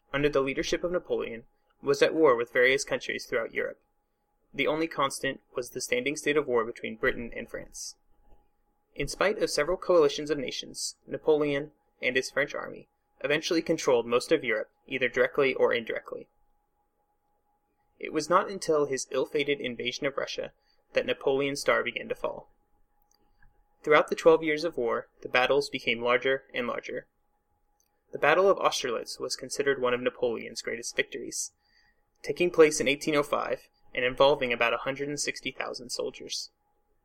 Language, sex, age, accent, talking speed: English, male, 20-39, American, 150 wpm